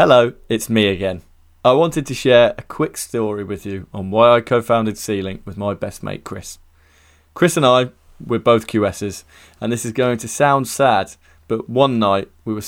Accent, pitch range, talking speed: British, 95-125 Hz, 200 wpm